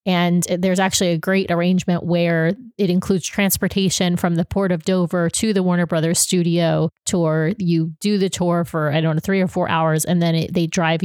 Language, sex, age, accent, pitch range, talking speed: English, female, 30-49, American, 170-195 Hz, 200 wpm